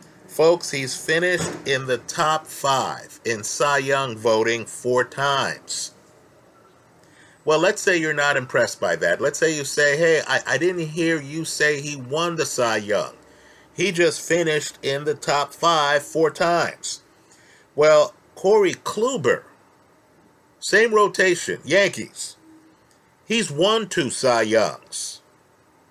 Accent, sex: American, male